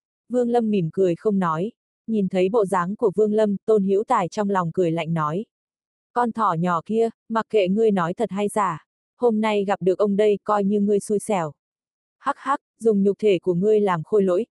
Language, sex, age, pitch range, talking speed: Vietnamese, female, 20-39, 180-220 Hz, 220 wpm